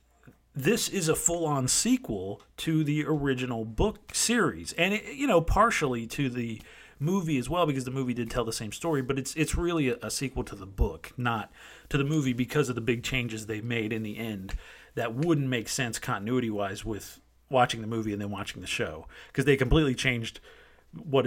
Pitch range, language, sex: 110-150 Hz, English, male